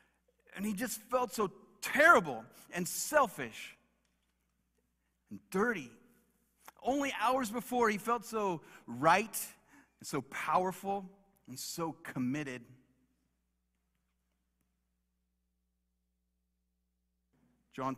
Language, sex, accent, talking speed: English, male, American, 80 wpm